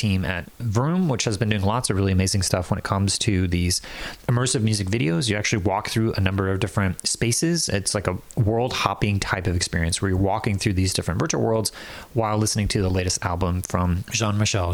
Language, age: English, 30-49